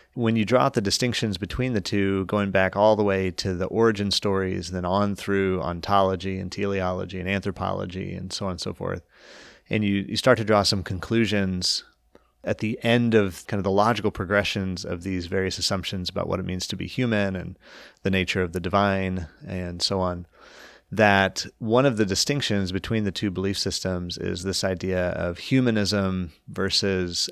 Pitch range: 95-105 Hz